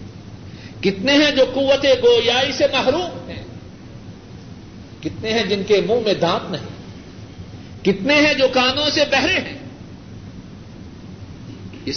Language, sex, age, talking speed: Urdu, male, 50-69, 120 wpm